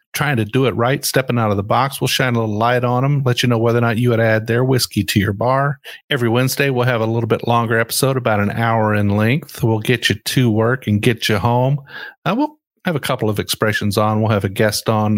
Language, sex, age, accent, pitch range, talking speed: English, male, 50-69, American, 105-130 Hz, 265 wpm